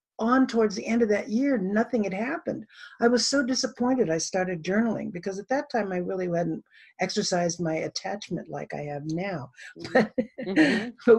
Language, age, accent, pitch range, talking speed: English, 60-79, American, 175-235 Hz, 170 wpm